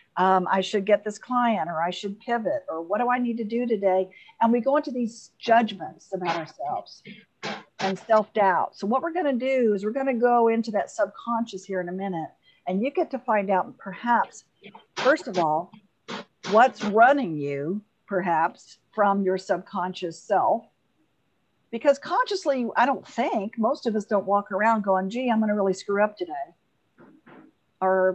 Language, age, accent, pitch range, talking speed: English, 50-69, American, 185-240 Hz, 180 wpm